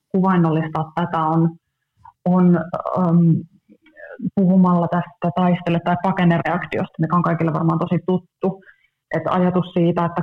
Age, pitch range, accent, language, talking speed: 20-39, 160-185 Hz, native, Finnish, 115 wpm